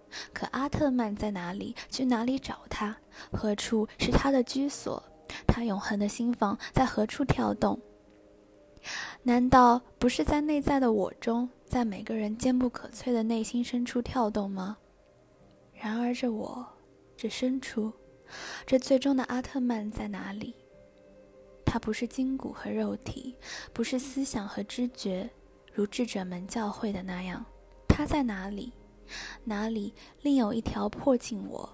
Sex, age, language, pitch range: female, 10-29, Chinese, 200-245 Hz